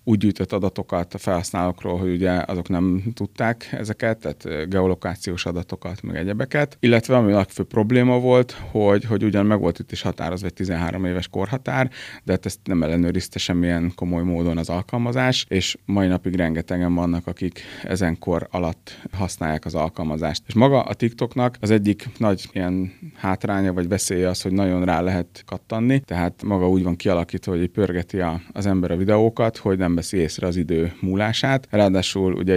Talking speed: 160 wpm